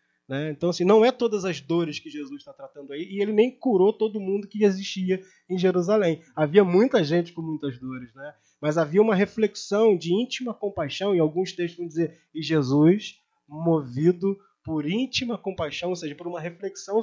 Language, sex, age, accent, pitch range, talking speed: Portuguese, male, 20-39, Brazilian, 150-190 Hz, 185 wpm